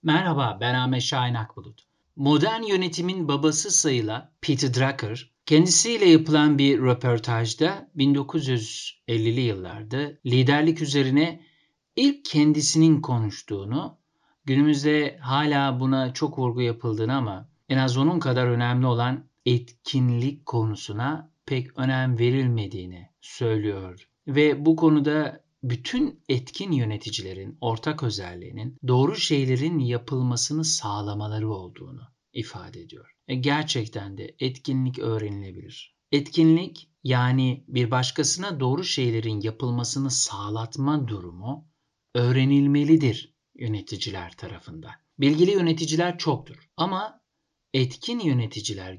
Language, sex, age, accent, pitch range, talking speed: Turkish, male, 50-69, native, 120-150 Hz, 95 wpm